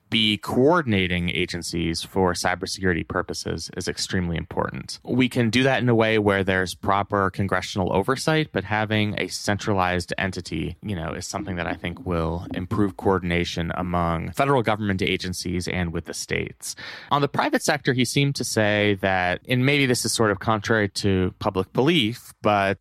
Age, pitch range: 20-39, 90-110 Hz